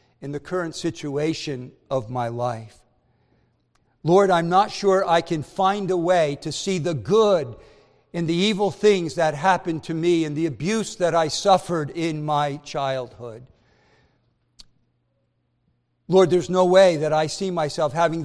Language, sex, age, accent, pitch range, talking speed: English, male, 50-69, American, 145-190 Hz, 150 wpm